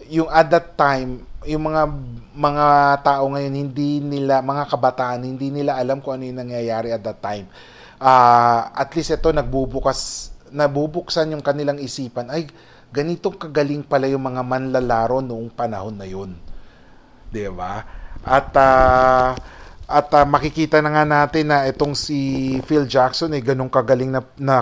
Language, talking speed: English, 155 wpm